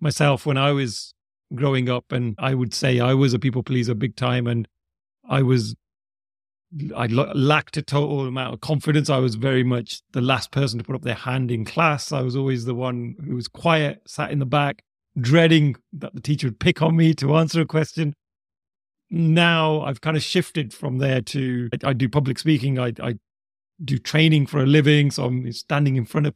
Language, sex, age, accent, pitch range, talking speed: English, male, 40-59, British, 130-160 Hz, 205 wpm